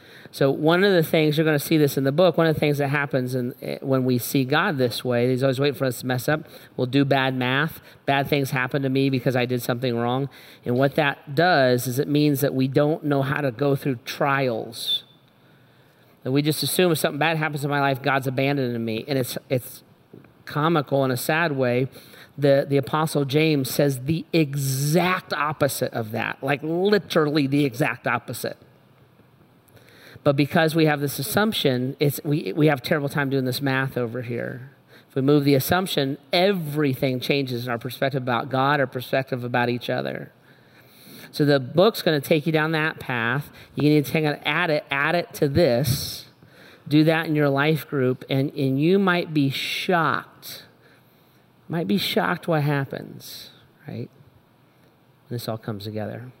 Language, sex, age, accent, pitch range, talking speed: English, male, 40-59, American, 130-155 Hz, 190 wpm